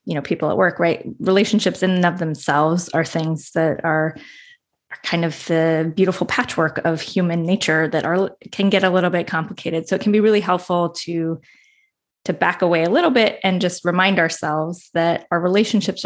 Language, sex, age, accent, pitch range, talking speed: English, female, 20-39, American, 160-190 Hz, 190 wpm